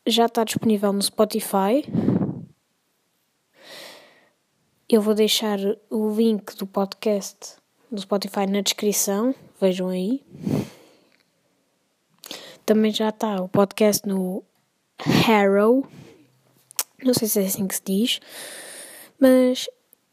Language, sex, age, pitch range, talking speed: Portuguese, female, 20-39, 200-245 Hz, 100 wpm